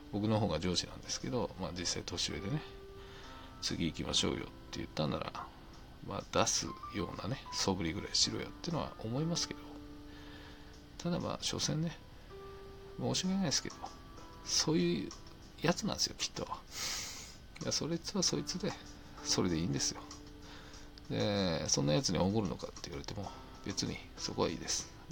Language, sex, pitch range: Japanese, male, 90-135 Hz